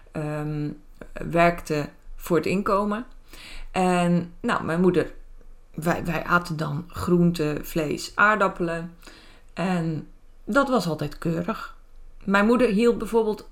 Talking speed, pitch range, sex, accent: 110 wpm, 170-225 Hz, female, Dutch